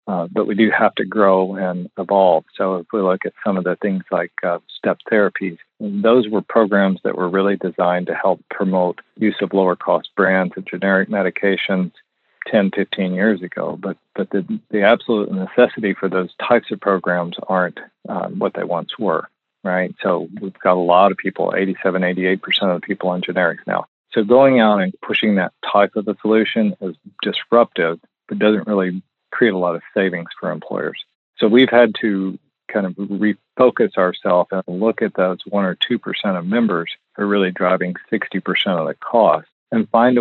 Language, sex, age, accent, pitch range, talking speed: English, male, 40-59, American, 95-105 Hz, 190 wpm